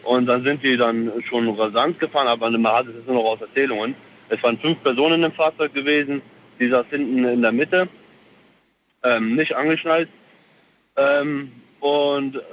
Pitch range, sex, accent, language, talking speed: 115-145 Hz, male, German, German, 165 wpm